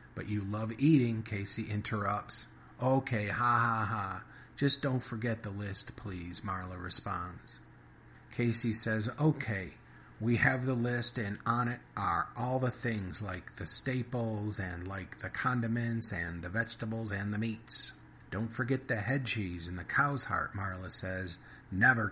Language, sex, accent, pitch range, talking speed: English, male, American, 95-115 Hz, 155 wpm